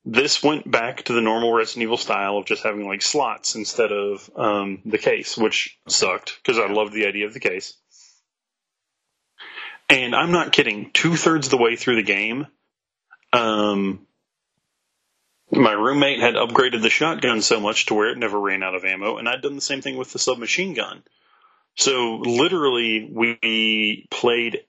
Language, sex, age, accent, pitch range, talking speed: English, male, 30-49, American, 105-125 Hz, 175 wpm